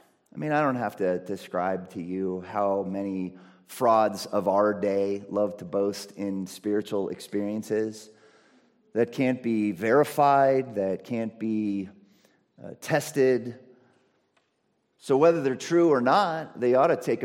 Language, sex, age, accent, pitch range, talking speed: English, male, 40-59, American, 110-165 Hz, 140 wpm